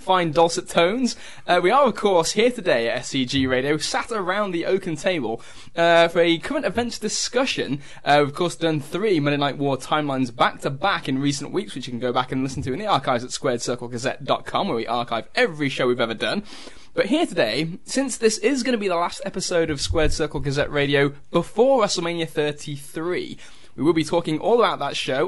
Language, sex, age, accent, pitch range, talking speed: English, male, 10-29, British, 140-190 Hz, 210 wpm